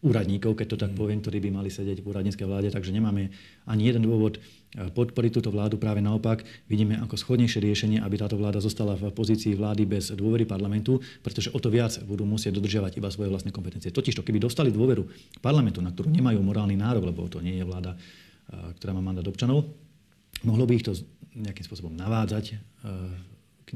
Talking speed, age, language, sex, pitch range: 185 wpm, 40-59, Slovak, male, 100-120 Hz